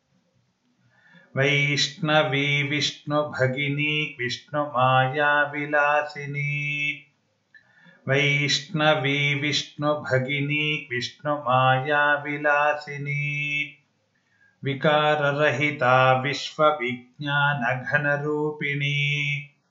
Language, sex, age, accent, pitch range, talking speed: Kannada, male, 50-69, native, 140-150 Hz, 30 wpm